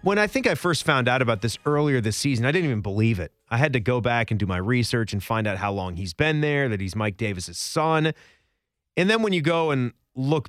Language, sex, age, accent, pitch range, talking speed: English, male, 30-49, American, 115-170 Hz, 265 wpm